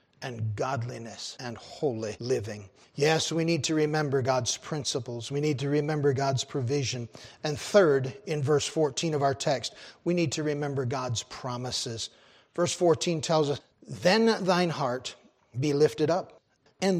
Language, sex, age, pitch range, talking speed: English, male, 40-59, 130-170 Hz, 150 wpm